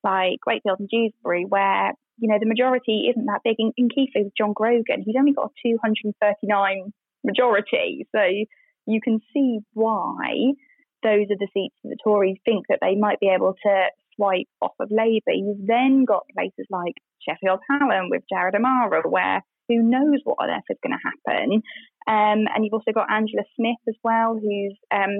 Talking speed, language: 190 wpm, English